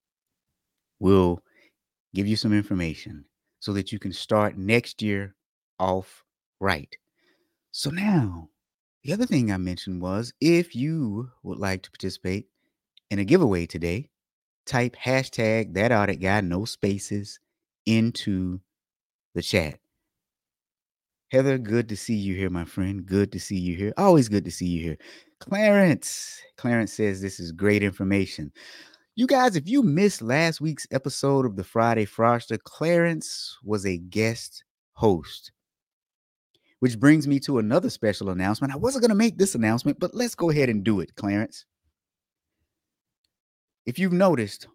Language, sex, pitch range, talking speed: English, male, 95-130 Hz, 150 wpm